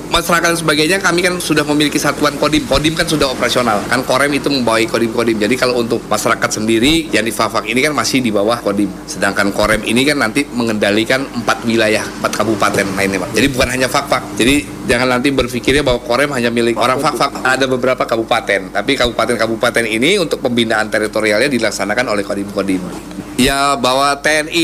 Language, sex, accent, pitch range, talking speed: Indonesian, male, native, 110-140 Hz, 180 wpm